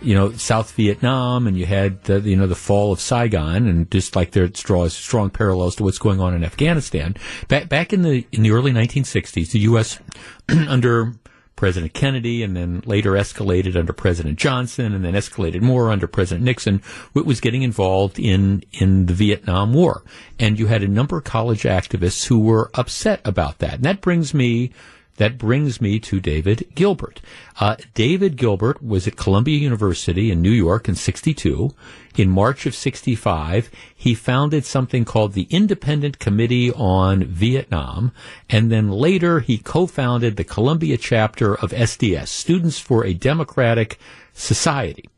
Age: 50-69